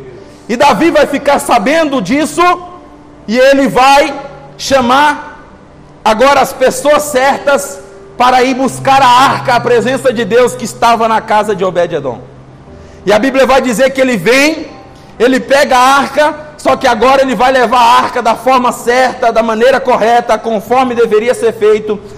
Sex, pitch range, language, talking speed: male, 230-270 Hz, Portuguese, 160 wpm